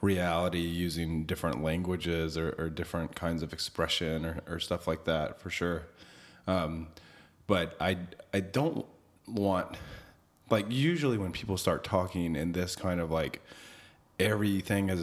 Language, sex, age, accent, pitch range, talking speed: English, male, 30-49, American, 80-105 Hz, 145 wpm